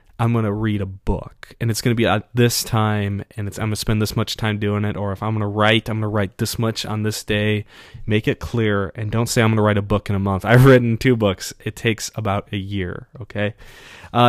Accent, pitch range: American, 105-120 Hz